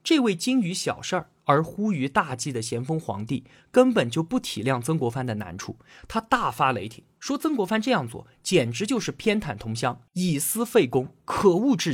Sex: male